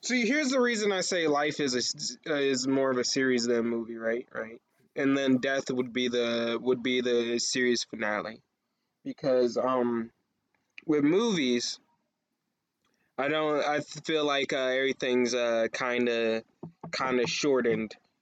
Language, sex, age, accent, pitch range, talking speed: English, male, 20-39, American, 120-150 Hz, 160 wpm